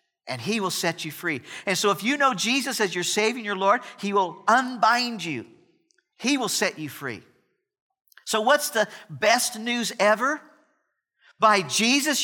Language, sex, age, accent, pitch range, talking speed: English, male, 50-69, American, 190-270 Hz, 170 wpm